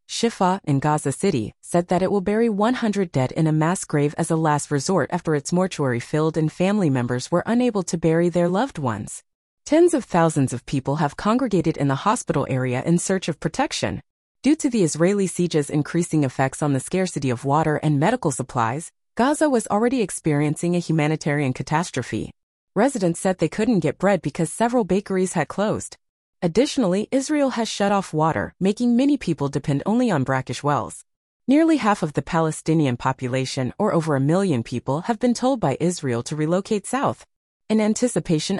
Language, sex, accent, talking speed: English, female, American, 180 wpm